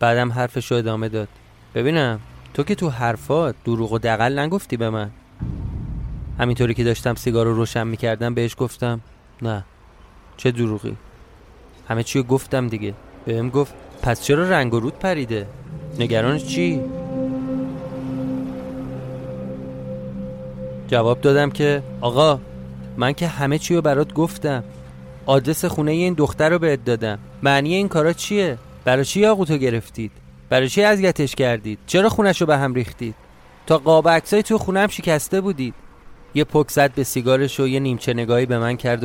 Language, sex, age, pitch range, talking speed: Persian, male, 30-49, 110-145 Hz, 145 wpm